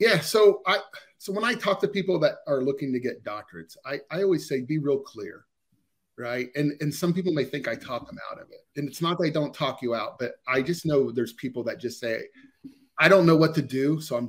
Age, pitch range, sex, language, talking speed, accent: 30-49, 130-175 Hz, male, English, 250 wpm, American